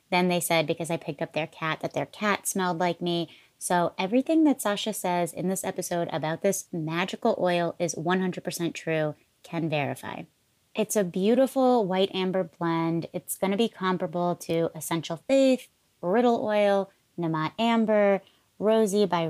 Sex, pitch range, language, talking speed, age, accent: female, 165-205 Hz, English, 160 wpm, 30-49, American